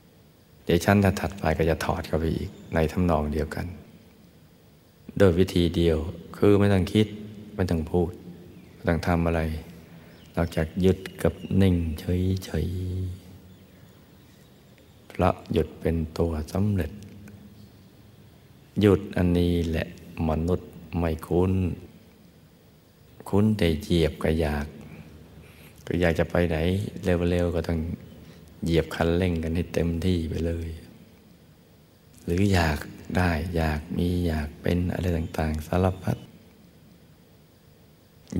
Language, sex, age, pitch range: Thai, male, 60-79, 80-90 Hz